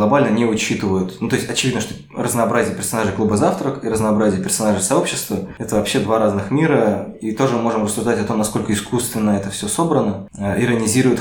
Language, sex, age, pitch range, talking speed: Russian, male, 20-39, 100-115 Hz, 180 wpm